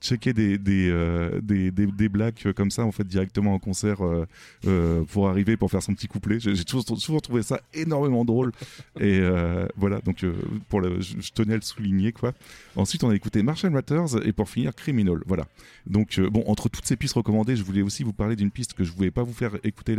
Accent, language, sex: French, French, male